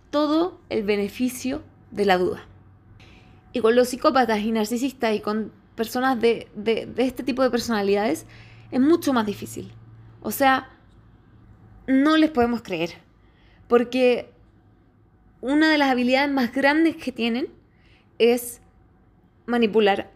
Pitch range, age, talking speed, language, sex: 210-260 Hz, 20-39, 130 wpm, Spanish, female